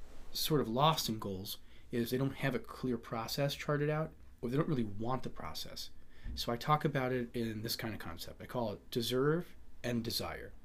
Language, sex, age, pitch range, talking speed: English, male, 30-49, 105-135 Hz, 210 wpm